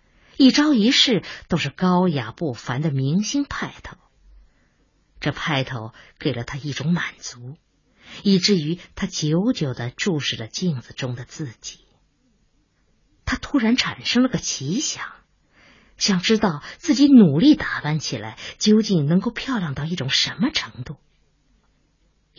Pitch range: 135-215 Hz